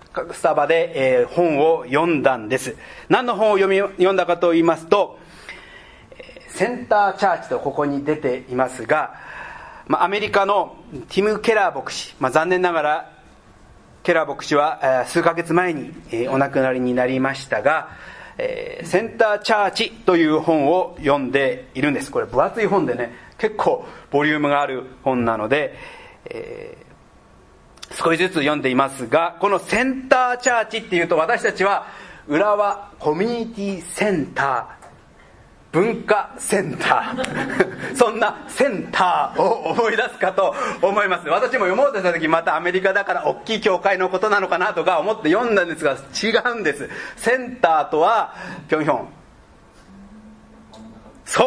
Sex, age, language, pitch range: male, 40-59, Japanese, 150-225 Hz